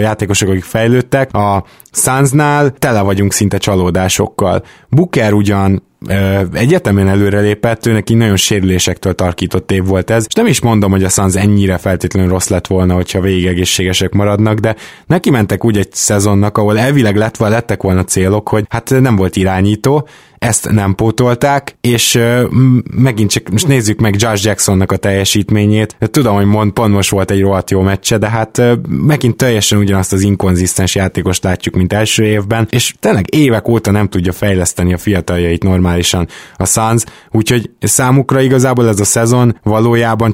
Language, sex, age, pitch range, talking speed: Hungarian, male, 20-39, 95-115 Hz, 165 wpm